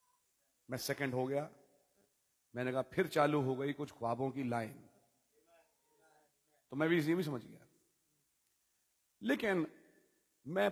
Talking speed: 130 wpm